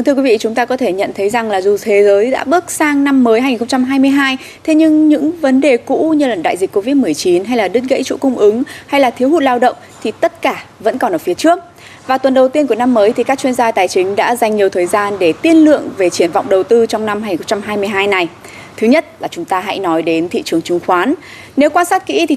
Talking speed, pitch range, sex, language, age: 265 wpm, 205-295 Hz, female, Vietnamese, 20-39